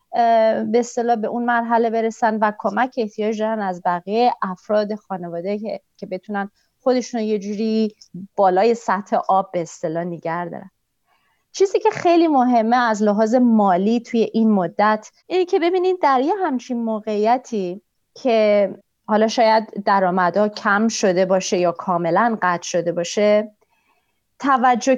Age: 30-49